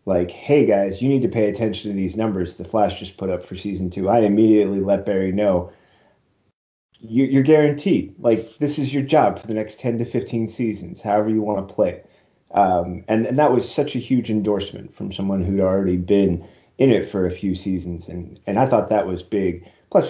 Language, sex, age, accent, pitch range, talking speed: English, male, 30-49, American, 95-115 Hz, 210 wpm